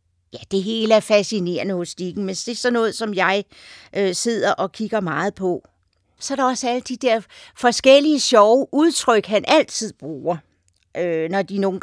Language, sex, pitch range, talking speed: Danish, female, 180-225 Hz, 190 wpm